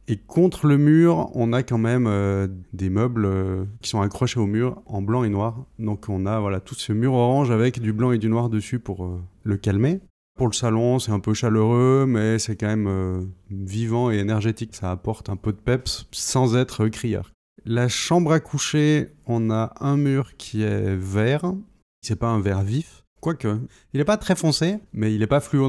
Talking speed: 215 wpm